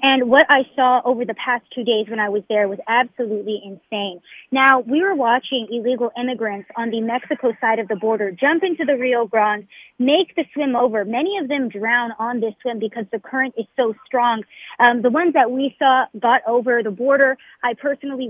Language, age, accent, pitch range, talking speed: English, 30-49, American, 225-265 Hz, 205 wpm